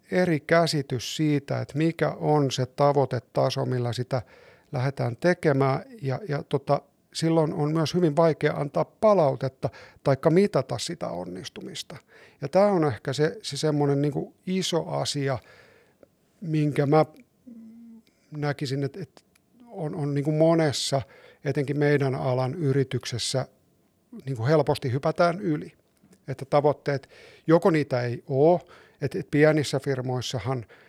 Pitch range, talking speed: 130-160 Hz, 120 wpm